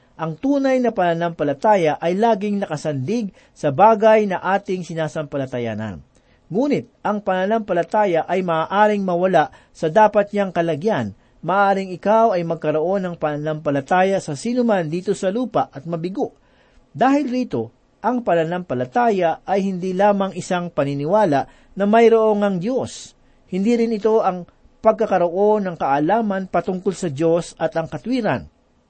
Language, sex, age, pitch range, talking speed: Filipino, male, 40-59, 160-215 Hz, 125 wpm